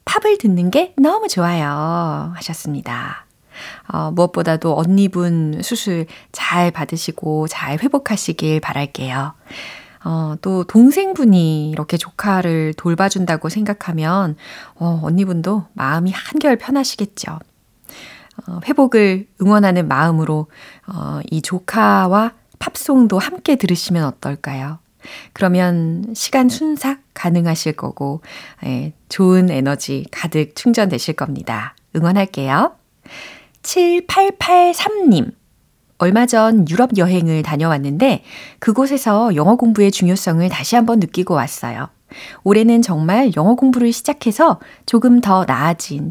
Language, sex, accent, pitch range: Korean, female, native, 160-230 Hz